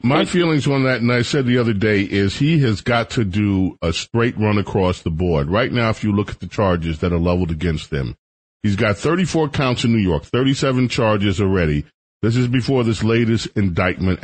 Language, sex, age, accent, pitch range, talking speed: English, male, 40-59, American, 95-135 Hz, 215 wpm